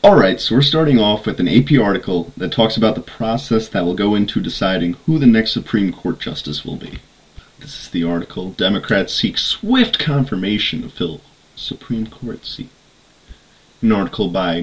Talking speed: 180 wpm